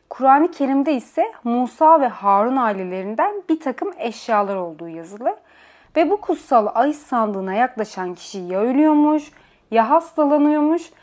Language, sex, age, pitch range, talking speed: Turkish, female, 30-49, 205-285 Hz, 125 wpm